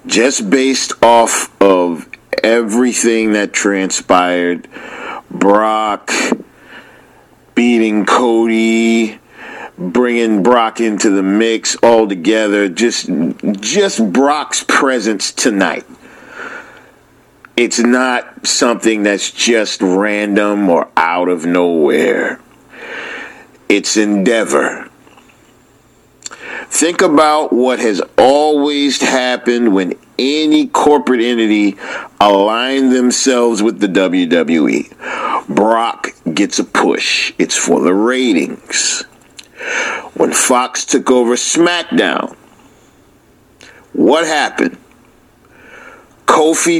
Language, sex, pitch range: English, male, 105-125 Hz